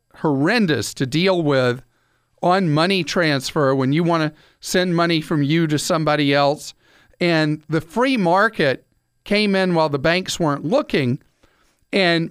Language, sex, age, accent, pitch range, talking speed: English, male, 50-69, American, 145-175 Hz, 145 wpm